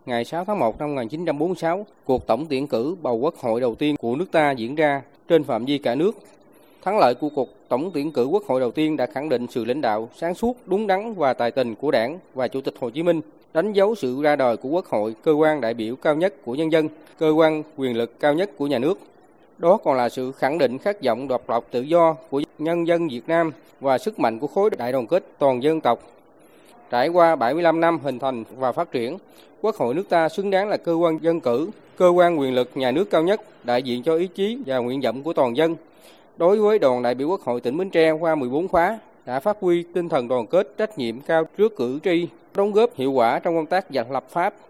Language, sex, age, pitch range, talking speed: Vietnamese, male, 20-39, 130-175 Hz, 250 wpm